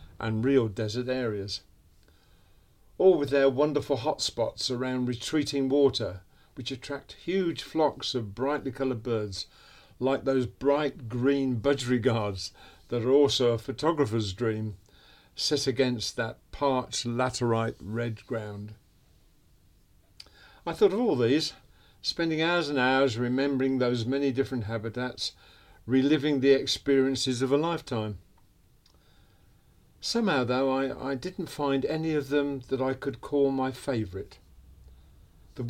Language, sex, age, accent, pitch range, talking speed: English, male, 50-69, British, 110-140 Hz, 125 wpm